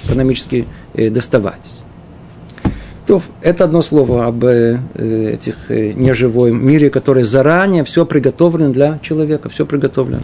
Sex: male